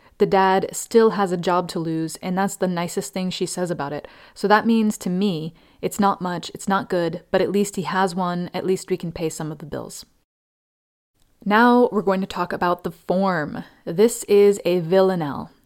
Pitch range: 165-205 Hz